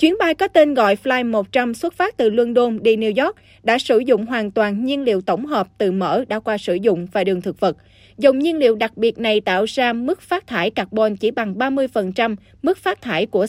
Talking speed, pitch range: 225 wpm, 210-275 Hz